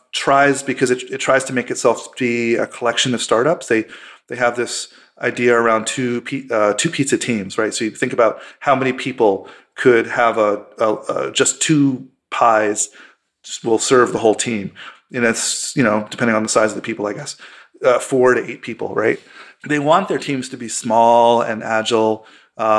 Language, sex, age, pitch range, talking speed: English, male, 30-49, 110-130 Hz, 195 wpm